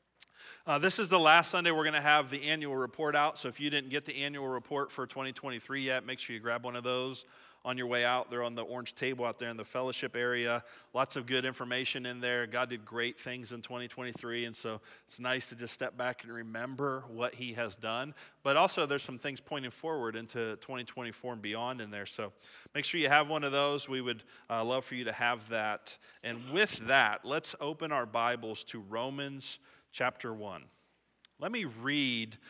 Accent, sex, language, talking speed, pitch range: American, male, English, 215 wpm, 120-145 Hz